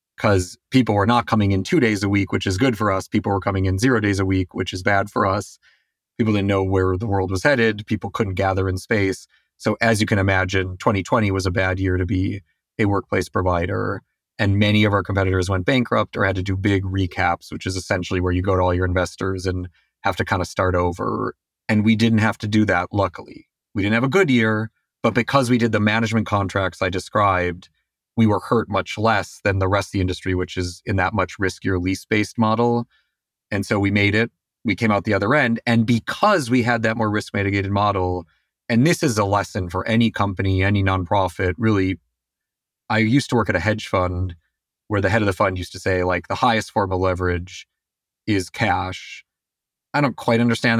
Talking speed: 220 wpm